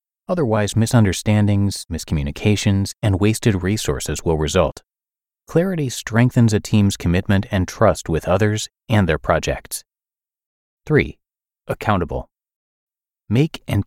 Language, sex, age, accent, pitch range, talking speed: English, male, 30-49, American, 85-120 Hz, 105 wpm